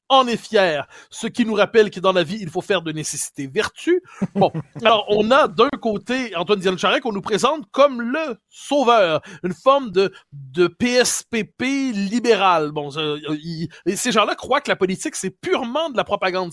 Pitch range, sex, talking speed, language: 185-250 Hz, male, 190 wpm, French